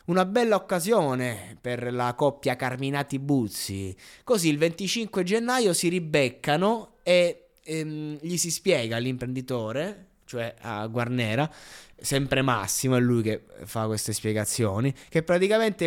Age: 20-39